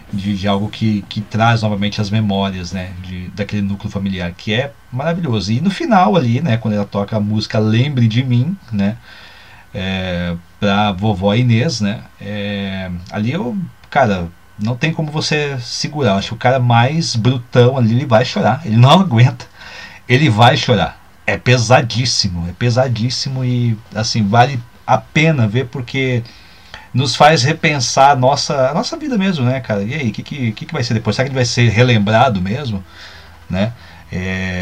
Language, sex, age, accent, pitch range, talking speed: Portuguese, male, 40-59, Brazilian, 100-130 Hz, 175 wpm